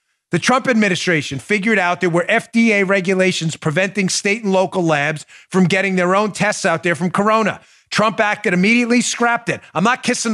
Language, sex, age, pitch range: English, male, 40-59, 125-175 Hz